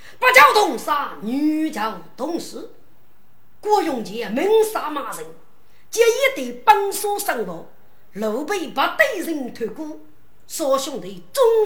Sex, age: female, 40-59